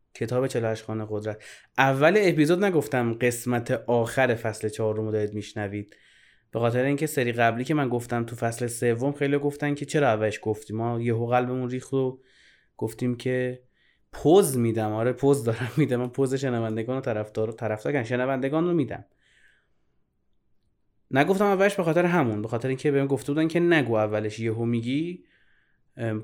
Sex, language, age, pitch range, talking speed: male, Persian, 20-39, 115-140 Hz, 155 wpm